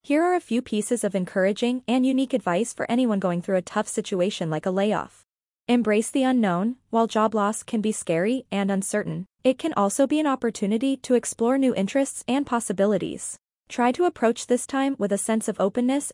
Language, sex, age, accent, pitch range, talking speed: English, female, 20-39, American, 205-260 Hz, 195 wpm